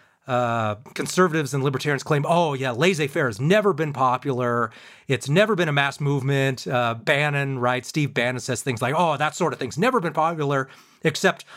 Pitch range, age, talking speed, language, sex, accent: 110-150 Hz, 30-49, 185 wpm, English, male, American